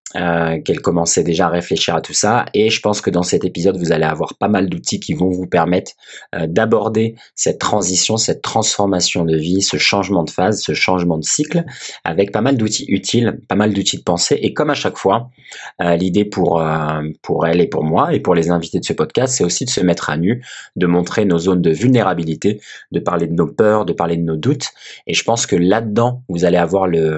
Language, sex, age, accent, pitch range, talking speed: French, male, 20-39, French, 85-105 Hz, 225 wpm